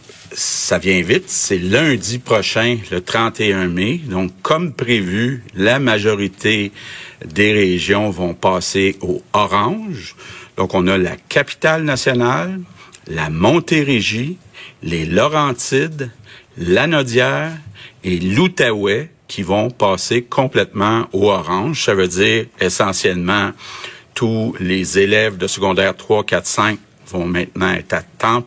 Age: 60-79